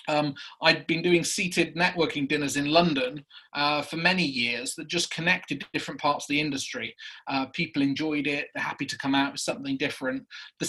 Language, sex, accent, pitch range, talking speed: English, male, British, 145-175 Hz, 190 wpm